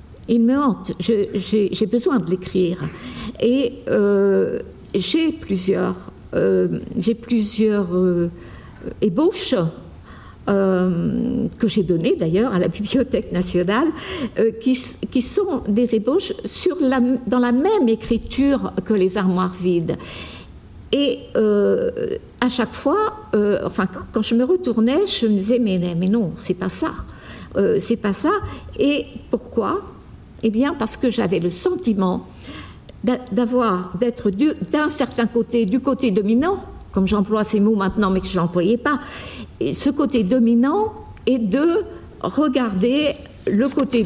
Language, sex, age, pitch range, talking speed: French, female, 60-79, 200-265 Hz, 140 wpm